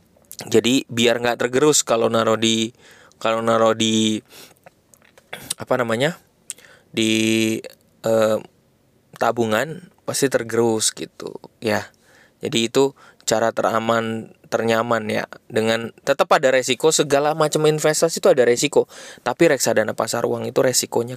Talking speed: 115 wpm